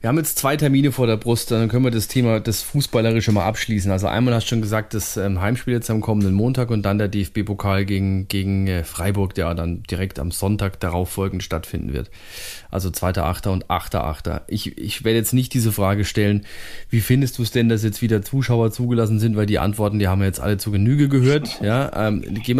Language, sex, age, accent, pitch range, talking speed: German, male, 30-49, German, 100-125 Hz, 220 wpm